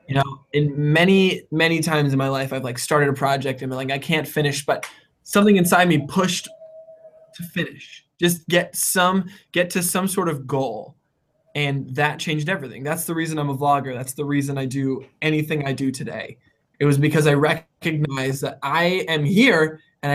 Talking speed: 195 wpm